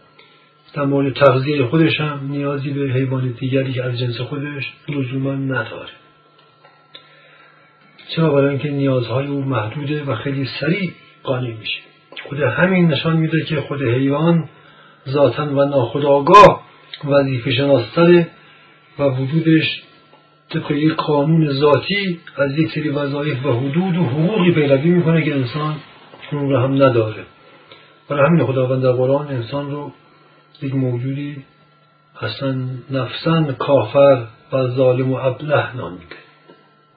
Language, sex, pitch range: Persian, male, 130-150 Hz